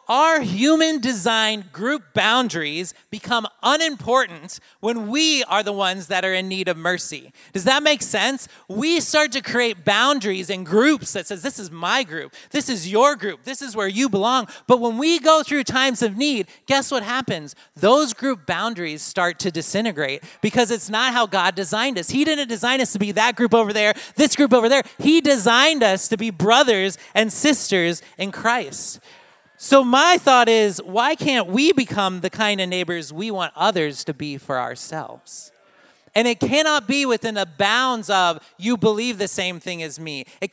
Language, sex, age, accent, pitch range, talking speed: English, male, 30-49, American, 185-260 Hz, 190 wpm